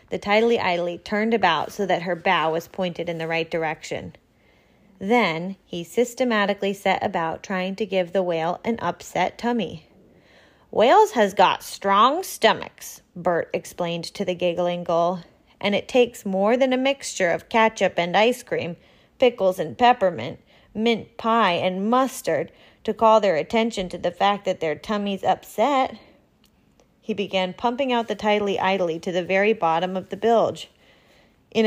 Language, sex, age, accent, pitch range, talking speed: English, female, 30-49, American, 175-225 Hz, 160 wpm